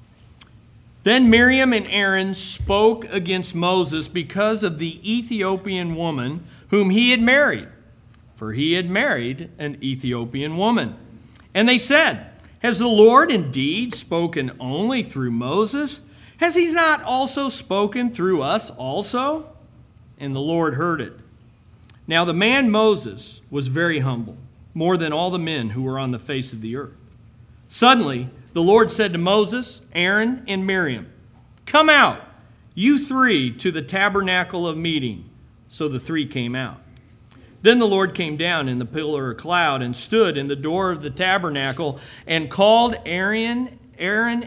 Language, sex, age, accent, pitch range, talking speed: English, male, 50-69, American, 125-210 Hz, 150 wpm